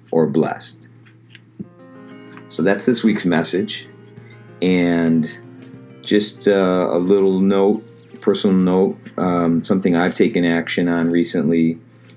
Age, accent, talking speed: 40-59, American, 110 wpm